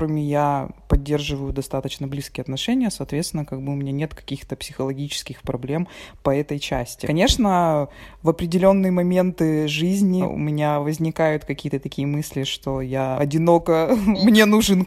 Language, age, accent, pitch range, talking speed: Russian, 20-39, native, 140-185 Hz, 135 wpm